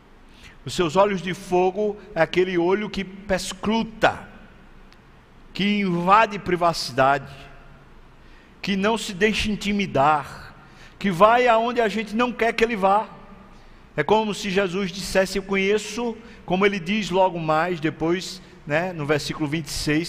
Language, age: Portuguese, 60-79